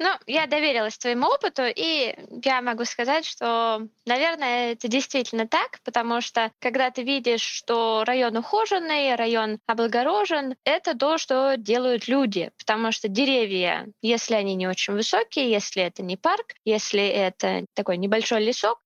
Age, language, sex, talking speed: 20-39, Russian, female, 145 wpm